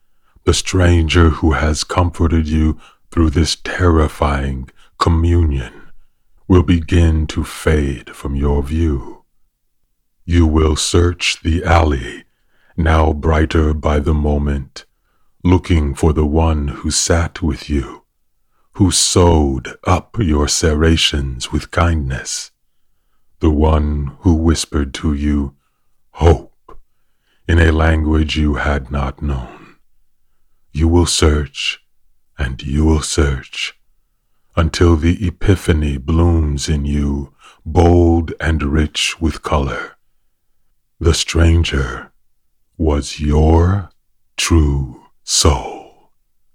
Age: 40-59